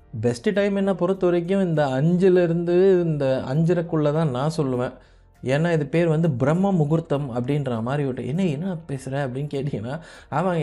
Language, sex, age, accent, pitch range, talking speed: Tamil, male, 30-49, native, 130-175 Hz, 145 wpm